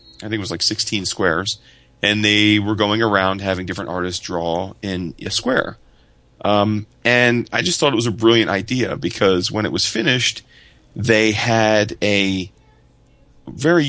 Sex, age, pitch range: male, 30-49, 95-115 Hz